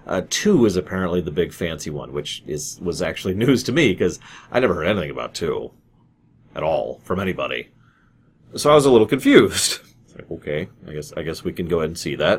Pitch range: 90-125 Hz